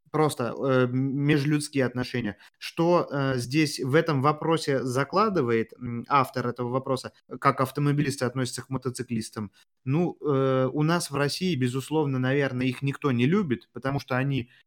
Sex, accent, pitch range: male, native, 125-150 Hz